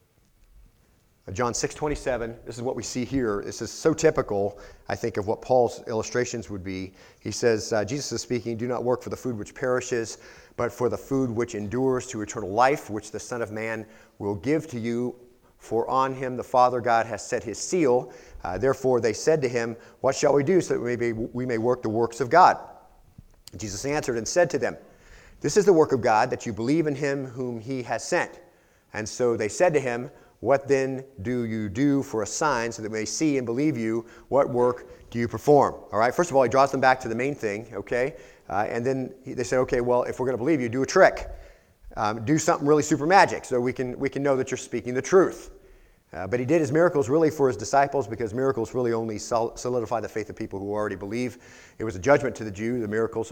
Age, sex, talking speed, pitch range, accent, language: 40-59, male, 235 wpm, 115-135 Hz, American, English